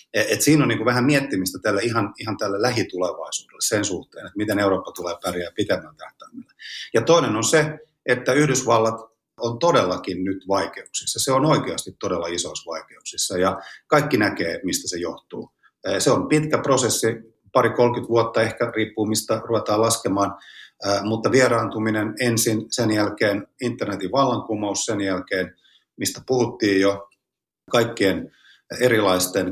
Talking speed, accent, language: 140 wpm, native, Finnish